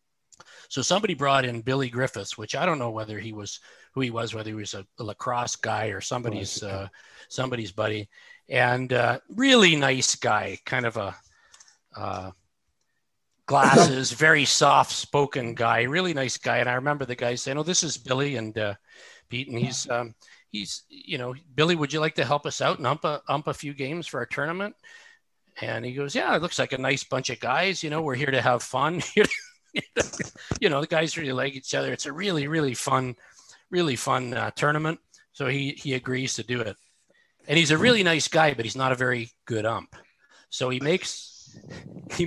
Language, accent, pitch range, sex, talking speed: English, American, 115-150 Hz, male, 205 wpm